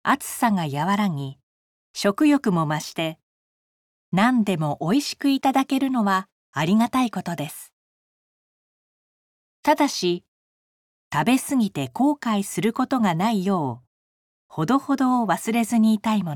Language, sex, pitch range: Japanese, female, 155-245 Hz